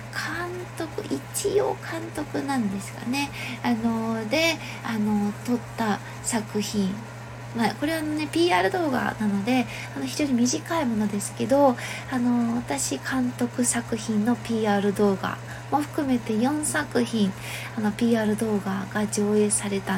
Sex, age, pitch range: female, 20-39, 195-285 Hz